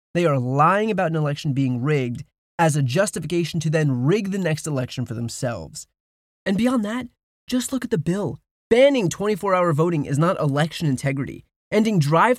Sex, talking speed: male, 180 wpm